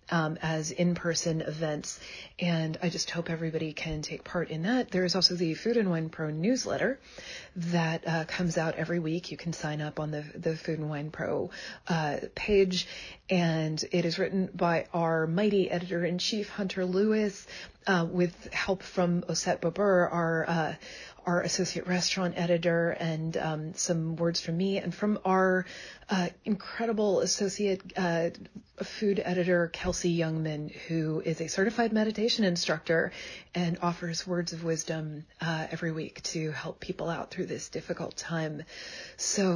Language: English